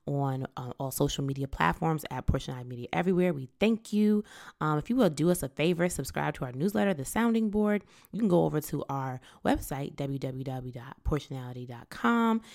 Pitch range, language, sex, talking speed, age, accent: 140-185 Hz, English, female, 170 wpm, 20-39, American